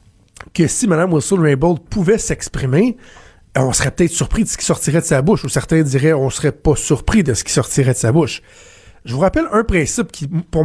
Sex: male